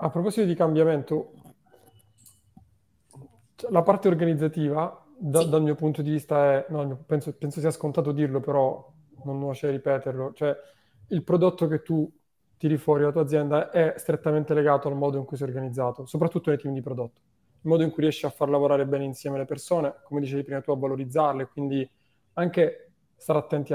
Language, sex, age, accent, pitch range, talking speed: Italian, male, 20-39, native, 135-155 Hz, 180 wpm